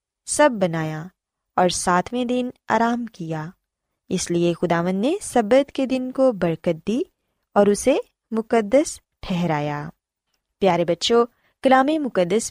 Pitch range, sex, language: 180-265 Hz, female, Urdu